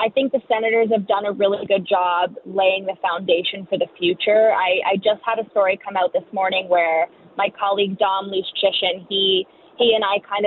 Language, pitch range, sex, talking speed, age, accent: English, 185-215 Hz, female, 205 wpm, 20-39, American